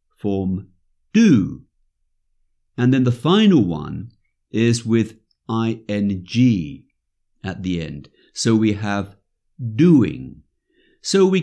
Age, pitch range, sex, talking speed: 60-79, 95-150 Hz, male, 100 wpm